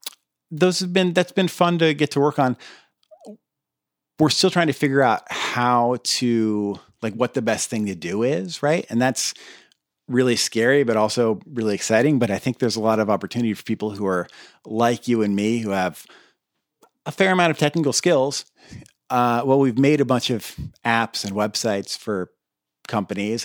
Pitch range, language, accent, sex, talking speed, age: 105-135 Hz, English, American, male, 185 wpm, 40-59